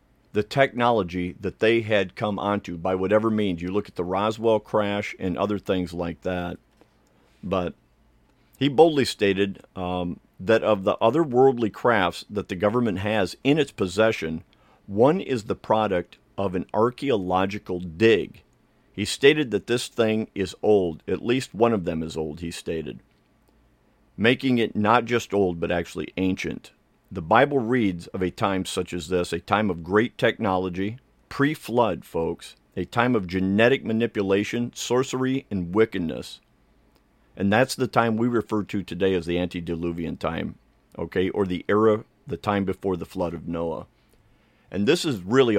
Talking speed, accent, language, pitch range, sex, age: 160 wpm, American, English, 90-110 Hz, male, 50-69